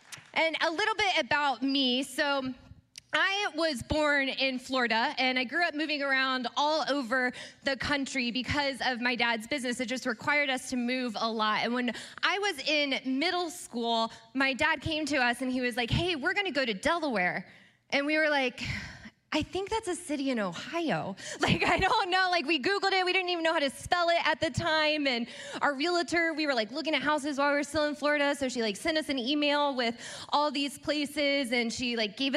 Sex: female